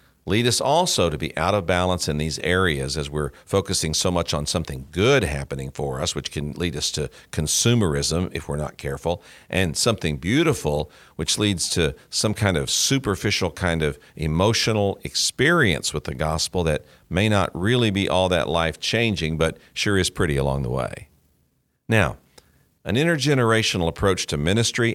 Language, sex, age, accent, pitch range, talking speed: English, male, 50-69, American, 75-100 Hz, 170 wpm